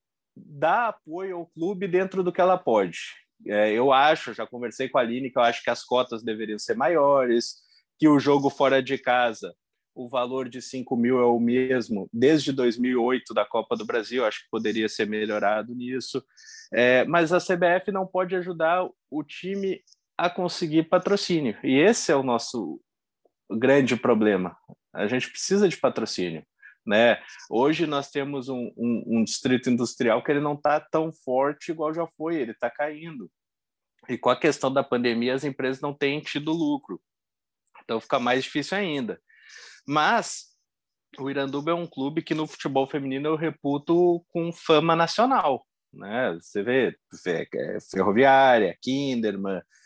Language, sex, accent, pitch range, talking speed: Portuguese, male, Brazilian, 125-170 Hz, 160 wpm